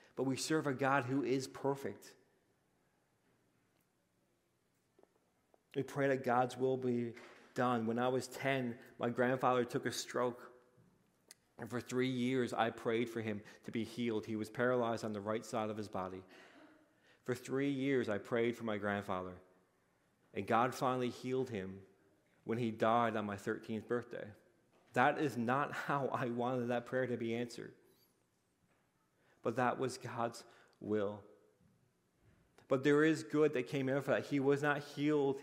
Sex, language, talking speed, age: male, English, 160 wpm, 40-59